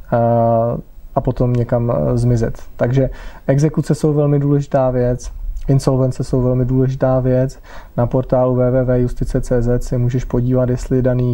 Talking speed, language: 120 wpm, Czech